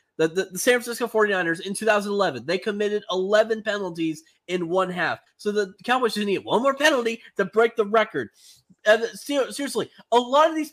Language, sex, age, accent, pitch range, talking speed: English, male, 30-49, American, 205-270 Hz, 180 wpm